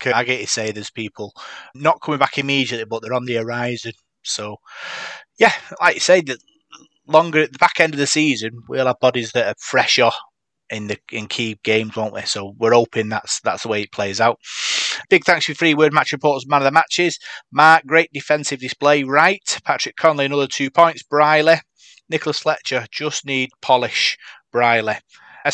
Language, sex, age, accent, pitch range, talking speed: English, male, 30-49, British, 115-150 Hz, 185 wpm